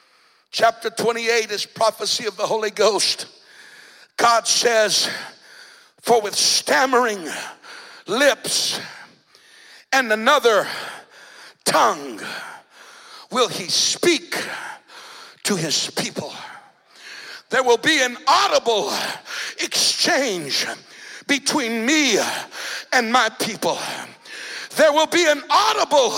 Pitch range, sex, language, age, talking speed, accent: 255-360 Hz, male, English, 60-79, 90 wpm, American